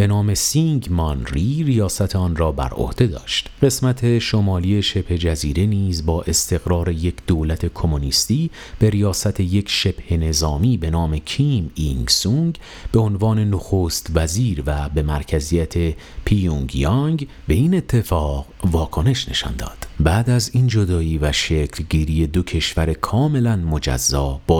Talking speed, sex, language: 140 wpm, male, Persian